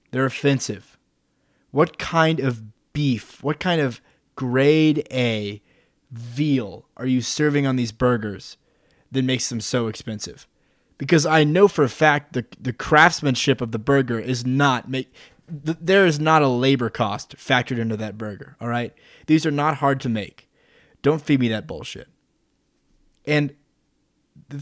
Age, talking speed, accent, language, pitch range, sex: 20-39, 155 wpm, American, English, 120-150 Hz, male